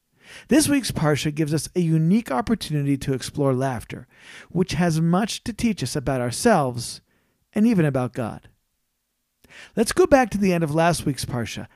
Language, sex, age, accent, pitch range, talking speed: English, male, 40-59, American, 150-220 Hz, 170 wpm